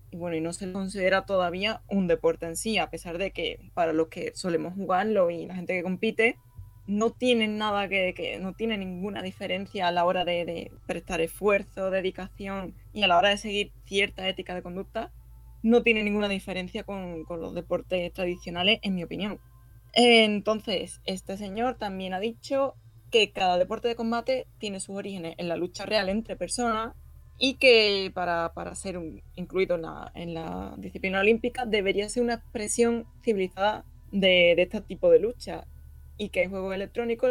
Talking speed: 180 wpm